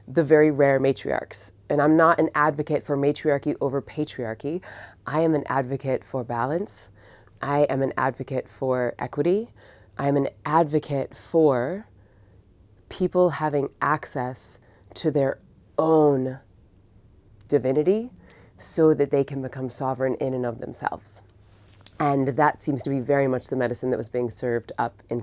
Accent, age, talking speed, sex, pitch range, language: American, 30-49, 145 wpm, female, 120-155 Hz, English